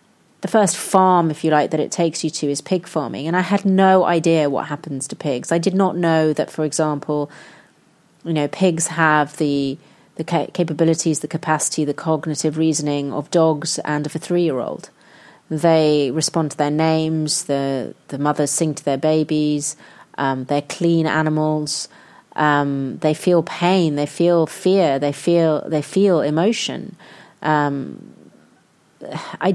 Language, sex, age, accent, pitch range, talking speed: English, female, 30-49, British, 150-180 Hz, 160 wpm